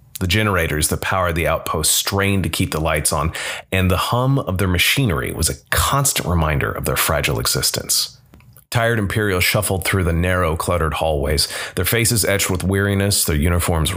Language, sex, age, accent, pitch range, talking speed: English, male, 30-49, American, 85-115 Hz, 175 wpm